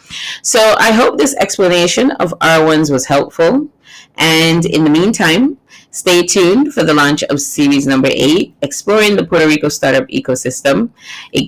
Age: 30-49